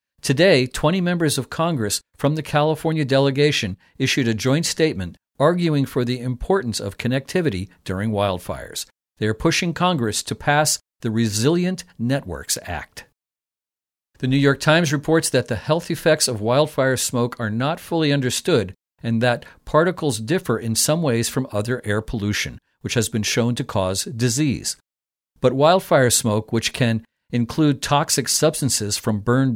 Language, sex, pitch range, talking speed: English, male, 110-150 Hz, 150 wpm